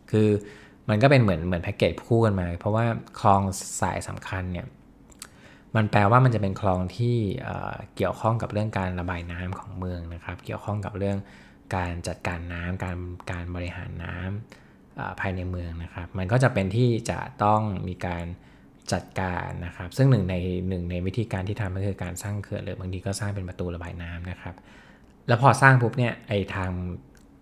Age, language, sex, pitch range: 20-39, English, male, 90-110 Hz